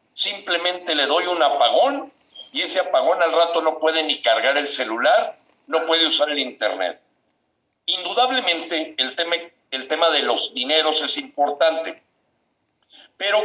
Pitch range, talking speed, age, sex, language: 135-170 Hz, 140 wpm, 50-69, male, Spanish